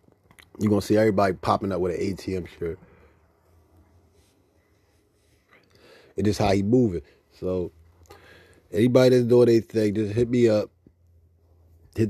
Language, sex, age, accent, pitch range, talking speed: English, male, 30-49, American, 90-105 Hz, 130 wpm